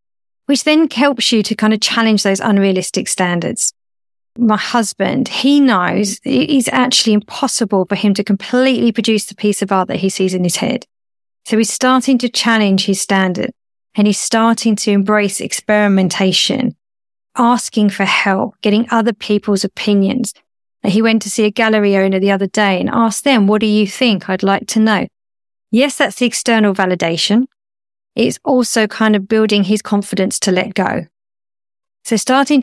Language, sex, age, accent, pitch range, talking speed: English, female, 40-59, British, 195-245 Hz, 170 wpm